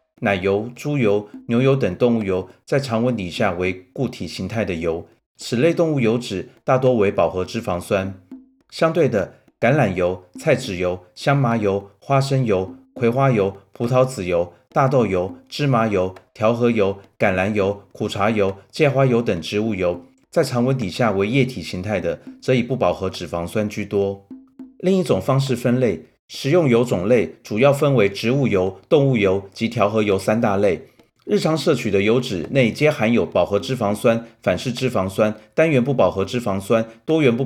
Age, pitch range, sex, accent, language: 30-49, 100-130 Hz, male, native, Chinese